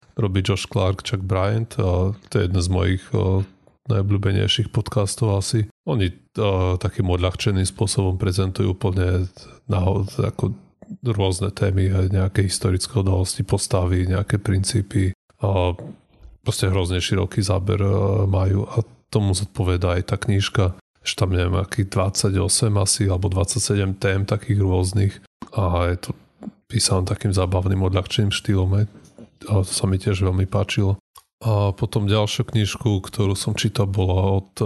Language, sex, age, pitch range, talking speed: Slovak, male, 30-49, 95-110 Hz, 130 wpm